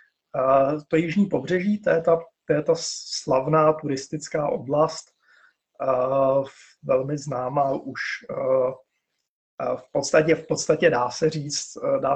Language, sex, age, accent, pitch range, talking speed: Czech, male, 30-49, native, 140-165 Hz, 120 wpm